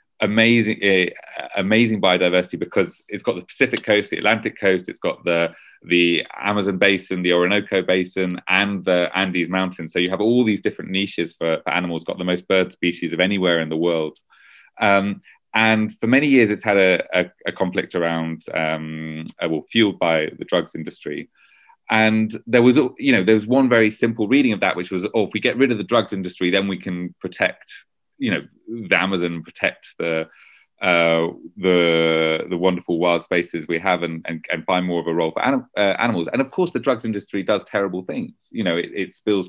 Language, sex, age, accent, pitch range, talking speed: English, male, 30-49, British, 85-105 Hz, 205 wpm